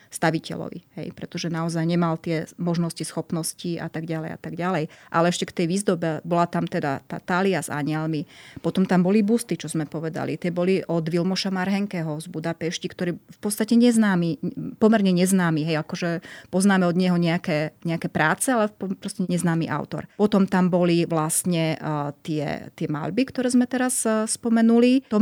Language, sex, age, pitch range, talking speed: Slovak, female, 30-49, 165-190 Hz, 170 wpm